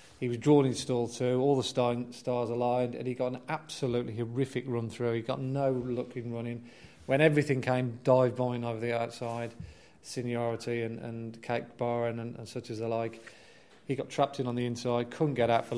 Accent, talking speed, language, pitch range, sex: British, 200 wpm, English, 120-130 Hz, male